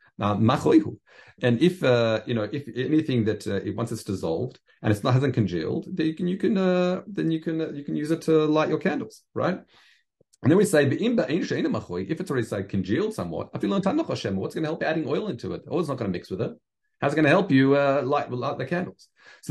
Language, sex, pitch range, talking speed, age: English, male, 110-160 Hz, 230 wpm, 40-59